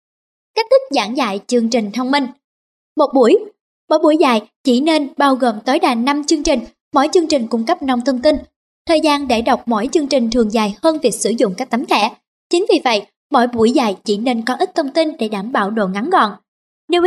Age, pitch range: 20-39, 235-320 Hz